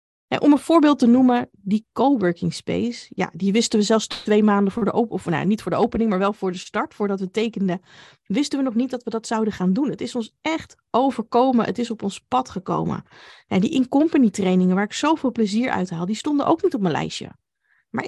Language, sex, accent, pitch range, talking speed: Dutch, female, Dutch, 195-245 Hz, 235 wpm